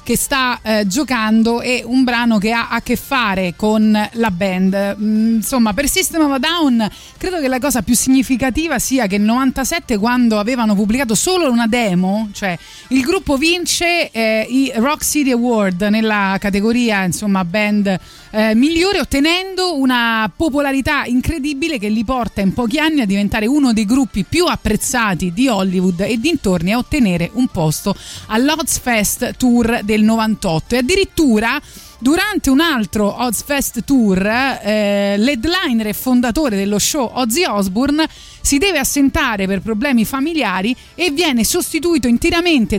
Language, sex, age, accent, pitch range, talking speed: Italian, female, 30-49, native, 210-265 Hz, 155 wpm